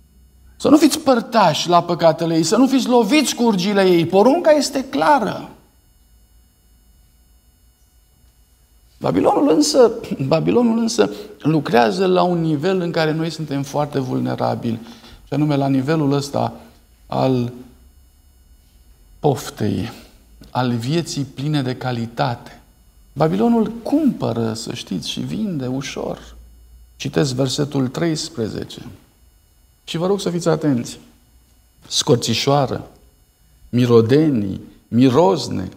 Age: 50-69